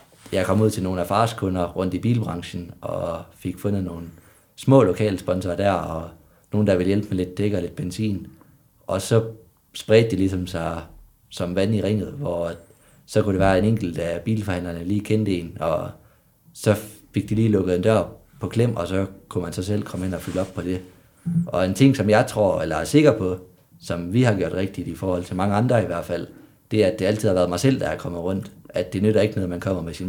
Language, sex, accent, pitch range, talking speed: Danish, male, native, 90-110 Hz, 235 wpm